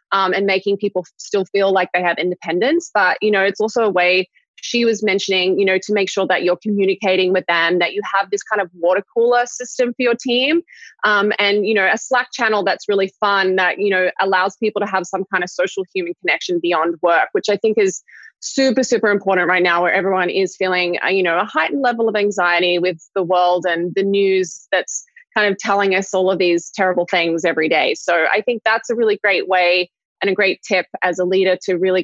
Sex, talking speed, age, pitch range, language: female, 230 wpm, 20-39, 180-215 Hz, English